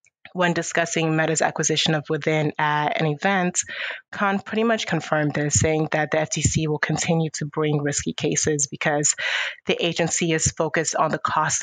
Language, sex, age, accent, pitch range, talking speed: English, female, 30-49, American, 150-165 Hz, 165 wpm